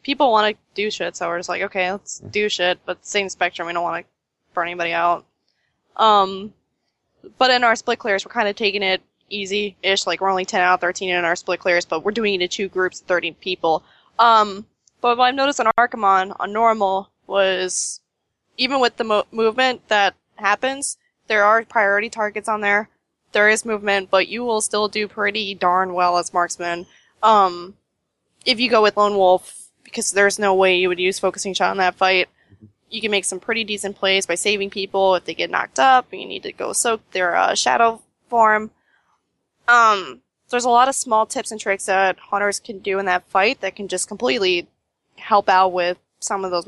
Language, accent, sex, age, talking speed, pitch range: English, American, female, 10-29, 210 wpm, 185-220 Hz